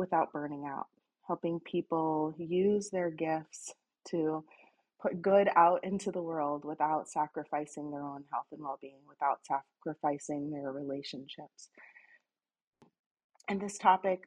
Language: English